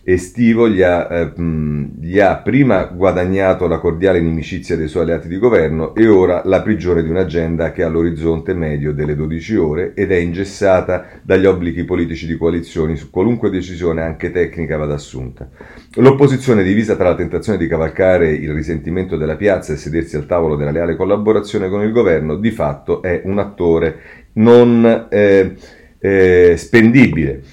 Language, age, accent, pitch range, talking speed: Italian, 40-59, native, 80-100 Hz, 155 wpm